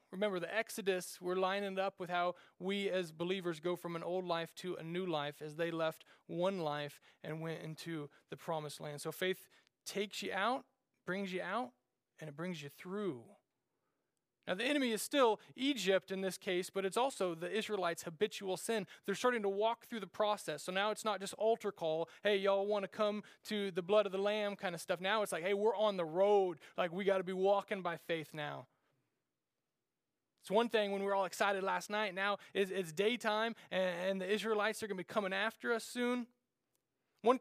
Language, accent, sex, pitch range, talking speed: English, American, male, 175-215 Hz, 210 wpm